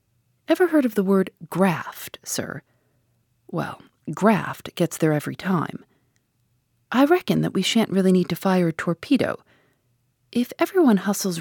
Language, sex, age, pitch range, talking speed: English, female, 40-59, 150-210 Hz, 140 wpm